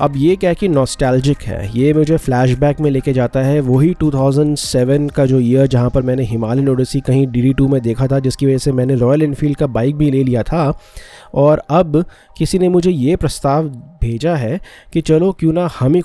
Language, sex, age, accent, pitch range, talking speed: Hindi, male, 20-39, native, 120-145 Hz, 210 wpm